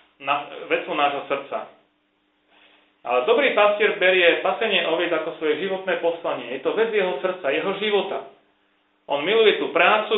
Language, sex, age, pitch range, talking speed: Slovak, male, 40-59, 145-190 Hz, 140 wpm